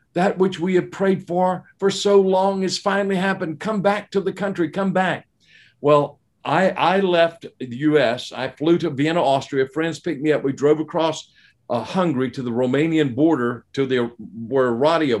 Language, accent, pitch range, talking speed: English, American, 125-170 Hz, 185 wpm